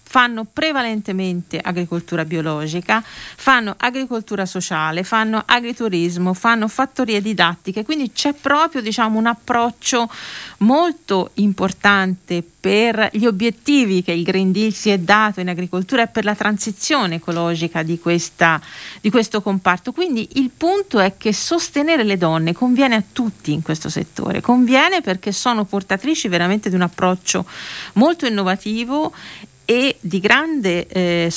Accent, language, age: native, Italian, 40-59